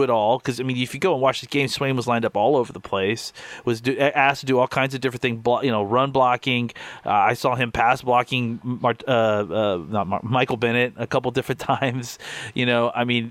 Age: 30-49